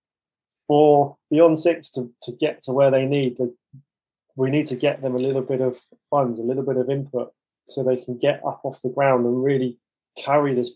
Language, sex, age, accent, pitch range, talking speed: English, male, 20-39, British, 125-145 Hz, 210 wpm